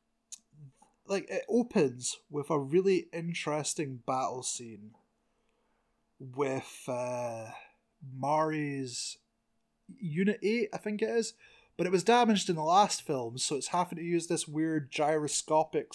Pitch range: 140-185 Hz